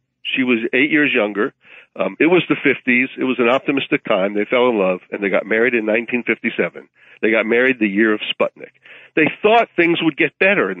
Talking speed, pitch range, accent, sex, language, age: 215 wpm, 120-155 Hz, American, male, English, 50-69